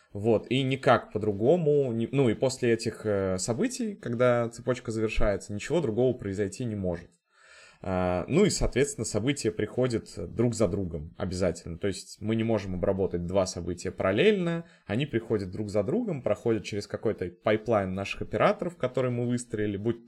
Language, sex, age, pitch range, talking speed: Russian, male, 20-39, 95-125 Hz, 150 wpm